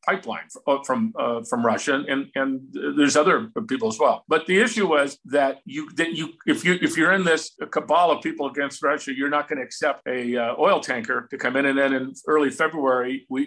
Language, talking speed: English, 225 wpm